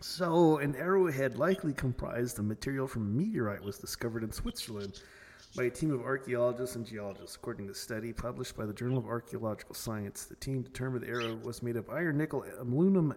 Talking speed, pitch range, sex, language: 185 wpm, 115-135 Hz, male, English